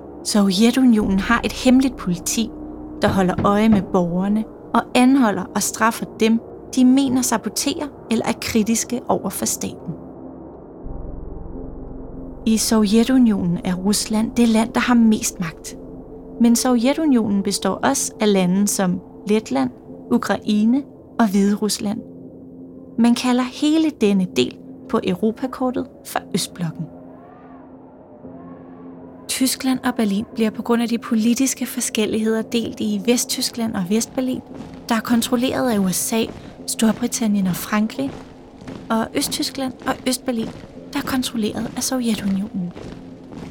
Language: Danish